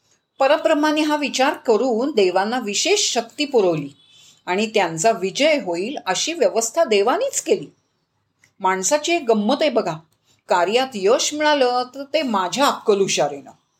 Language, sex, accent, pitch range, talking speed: Marathi, female, native, 195-285 Hz, 120 wpm